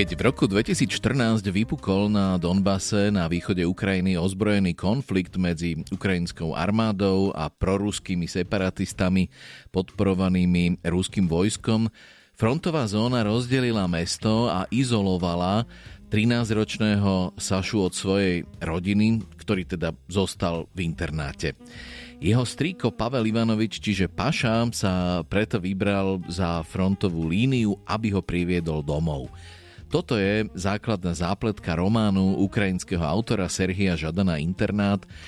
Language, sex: Slovak, male